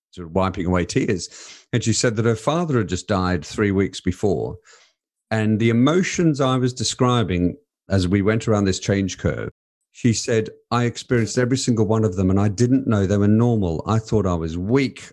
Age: 50-69